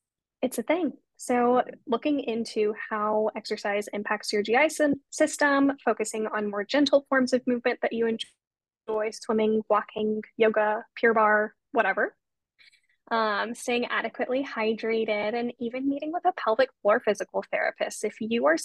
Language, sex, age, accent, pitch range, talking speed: English, female, 10-29, American, 210-260 Hz, 145 wpm